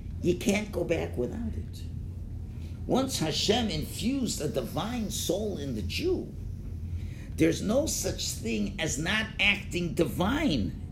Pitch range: 85-145 Hz